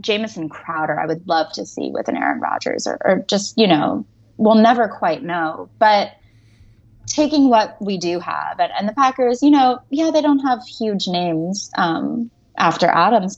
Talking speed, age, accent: 185 wpm, 20-39, American